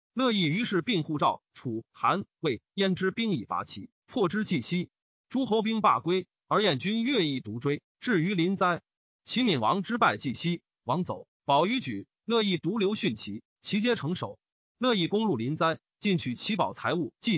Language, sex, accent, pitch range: Chinese, male, native, 155-215 Hz